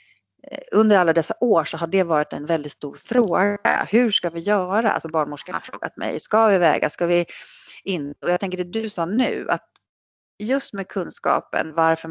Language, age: English, 30-49